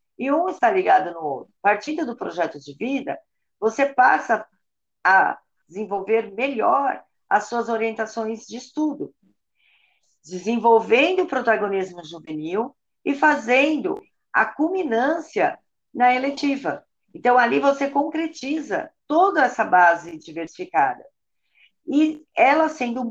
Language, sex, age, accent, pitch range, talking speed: Portuguese, female, 50-69, Brazilian, 190-300 Hz, 110 wpm